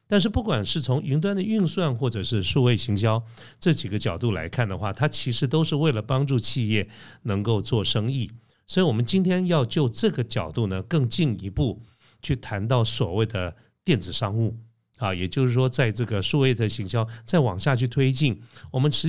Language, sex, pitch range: Chinese, male, 105-135 Hz